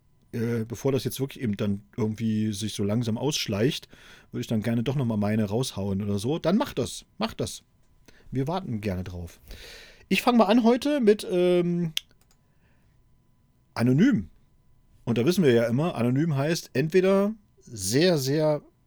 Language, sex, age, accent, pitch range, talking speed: German, male, 40-59, German, 115-160 Hz, 160 wpm